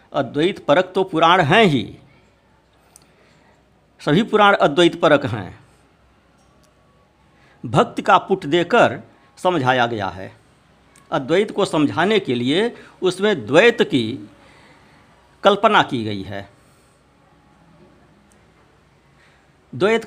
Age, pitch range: 60-79, 130-185 Hz